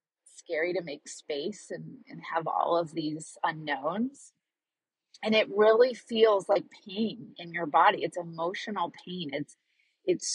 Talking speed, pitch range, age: 145 wpm, 165-200 Hz, 30-49